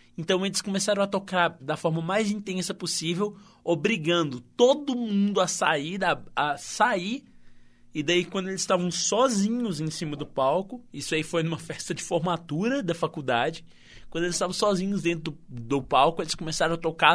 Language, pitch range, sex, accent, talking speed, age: Portuguese, 135-195 Hz, male, Brazilian, 170 wpm, 20-39